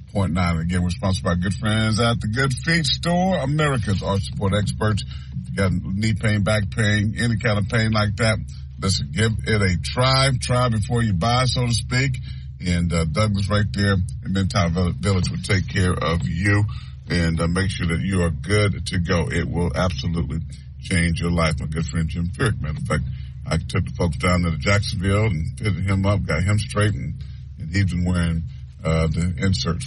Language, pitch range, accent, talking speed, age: English, 90-115 Hz, American, 210 wpm, 40-59